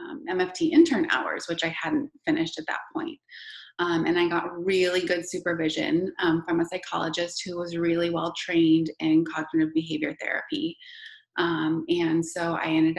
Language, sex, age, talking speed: English, female, 20-39, 170 wpm